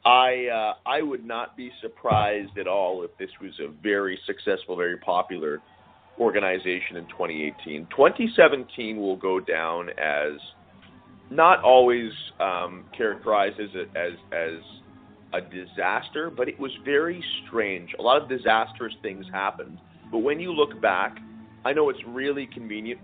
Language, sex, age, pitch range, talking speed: English, male, 40-59, 95-125 Hz, 145 wpm